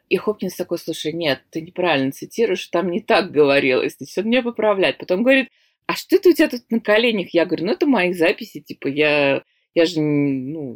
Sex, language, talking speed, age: female, Russian, 205 wpm, 20-39